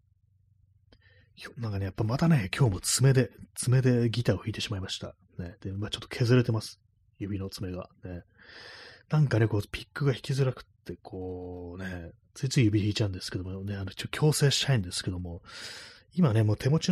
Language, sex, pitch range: Japanese, male, 95-120 Hz